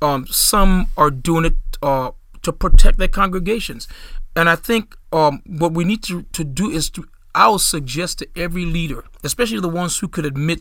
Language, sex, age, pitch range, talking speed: English, male, 40-59, 145-175 Hz, 185 wpm